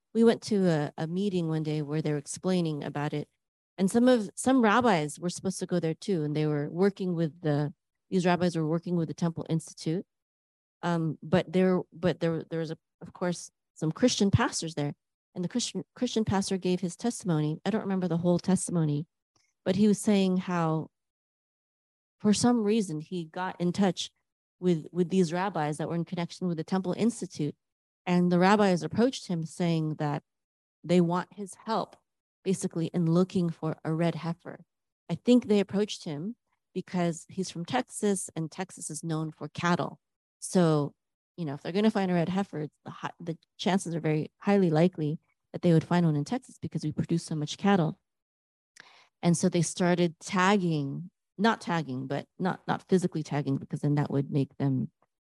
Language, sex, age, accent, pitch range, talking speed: English, female, 30-49, American, 155-190 Hz, 190 wpm